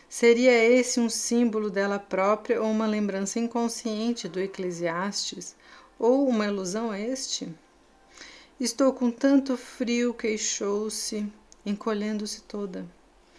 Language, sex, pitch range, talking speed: Portuguese, female, 185-225 Hz, 110 wpm